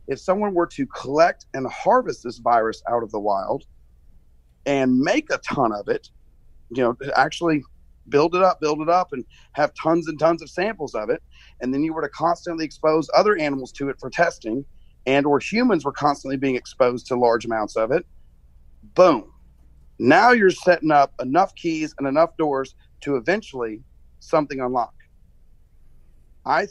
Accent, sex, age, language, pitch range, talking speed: American, male, 40-59, English, 115-160 Hz, 175 wpm